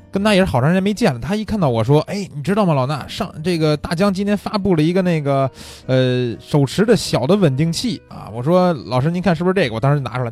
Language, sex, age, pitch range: Chinese, male, 20-39, 125-180 Hz